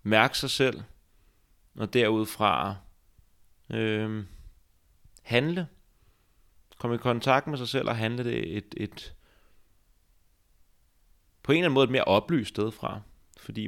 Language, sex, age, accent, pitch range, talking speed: Danish, male, 30-49, native, 90-115 Hz, 125 wpm